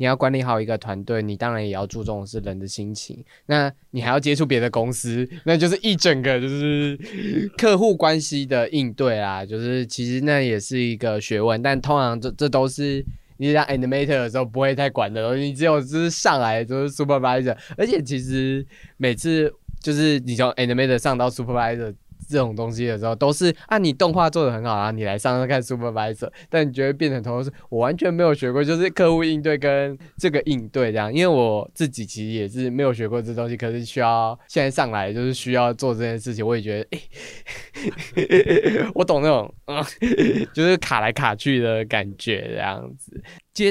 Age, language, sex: 20-39, Chinese, male